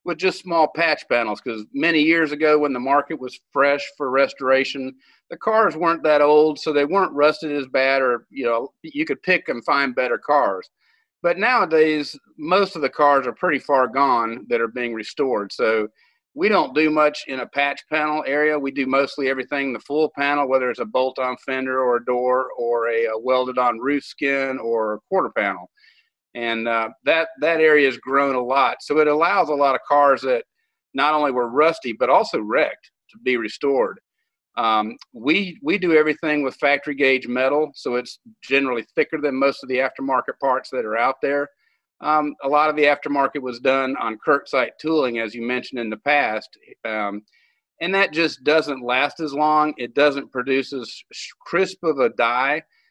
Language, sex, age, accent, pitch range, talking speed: English, male, 50-69, American, 130-155 Hz, 190 wpm